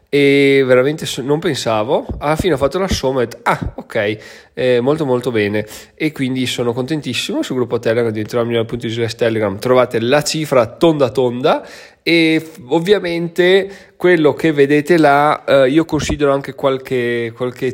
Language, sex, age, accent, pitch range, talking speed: Italian, male, 20-39, native, 115-140 Hz, 160 wpm